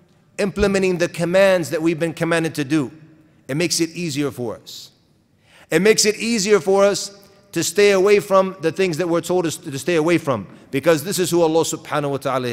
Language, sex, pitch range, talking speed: English, male, 140-185 Hz, 205 wpm